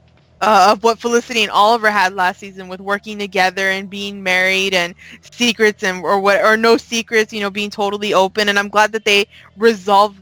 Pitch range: 195-220 Hz